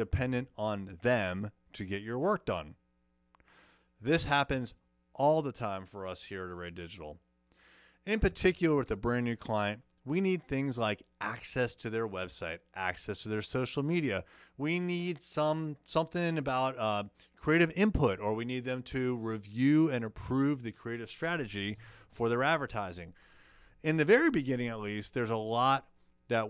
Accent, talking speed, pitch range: American, 165 wpm, 95-130 Hz